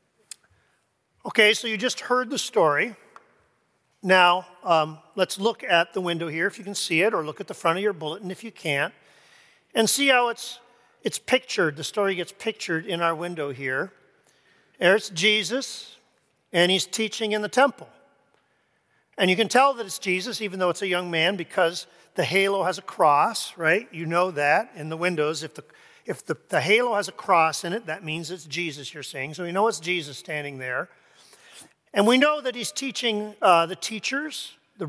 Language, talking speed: English, 195 wpm